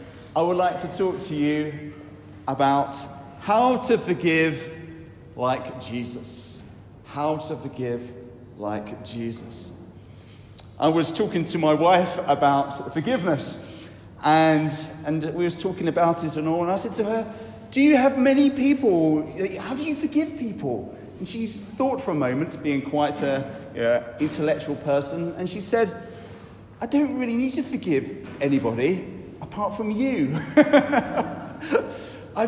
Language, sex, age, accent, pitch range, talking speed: English, male, 40-59, British, 130-180 Hz, 140 wpm